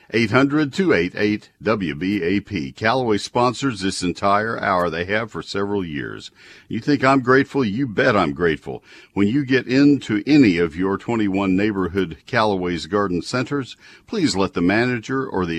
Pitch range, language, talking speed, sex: 85-110 Hz, English, 140 wpm, male